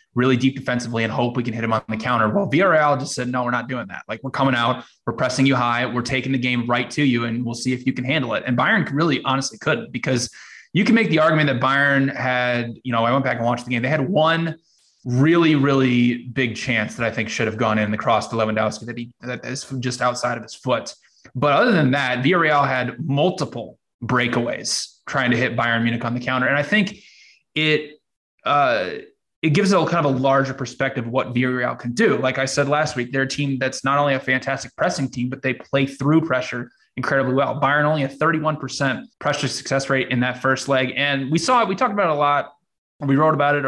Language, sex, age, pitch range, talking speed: English, male, 20-39, 125-145 Hz, 245 wpm